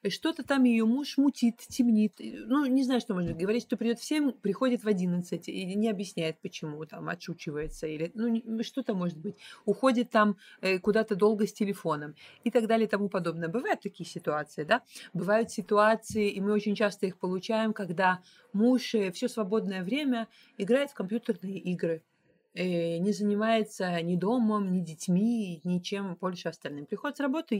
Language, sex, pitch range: Russian, female, 175-225 Hz